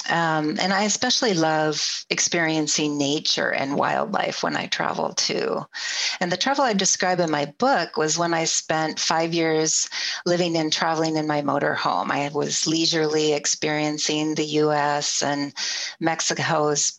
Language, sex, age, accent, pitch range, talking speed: English, female, 40-59, American, 150-170 Hz, 145 wpm